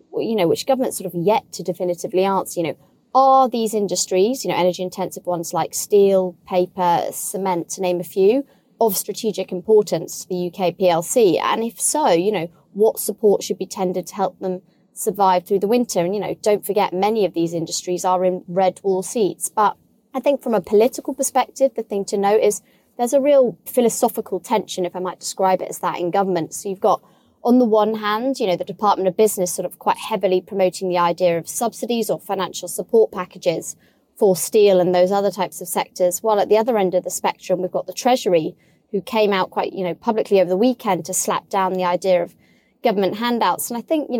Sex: female